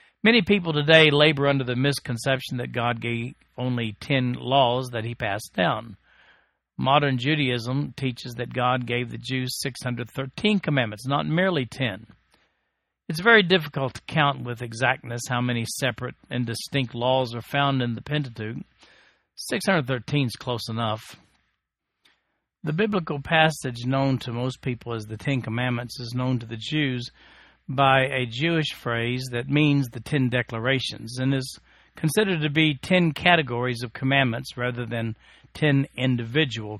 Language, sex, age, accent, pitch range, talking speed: English, male, 50-69, American, 120-150 Hz, 145 wpm